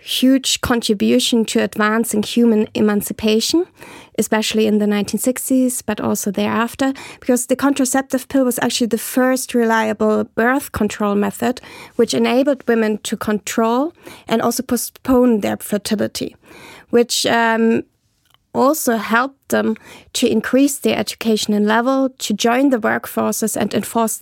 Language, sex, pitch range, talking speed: English, female, 215-245 Hz, 130 wpm